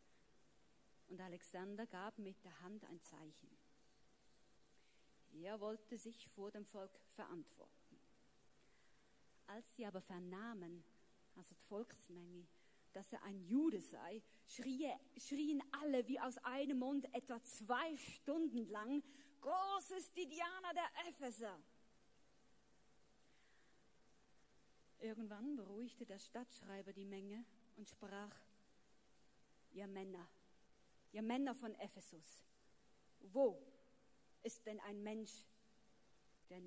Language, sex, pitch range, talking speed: German, female, 195-245 Hz, 100 wpm